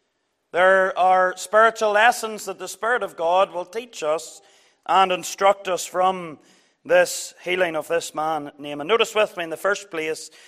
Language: English